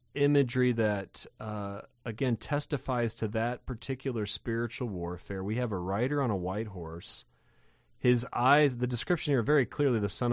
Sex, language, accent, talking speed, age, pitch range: male, English, American, 155 wpm, 30-49, 95-120 Hz